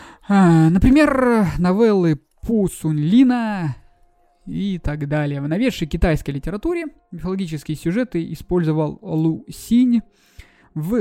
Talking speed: 100 wpm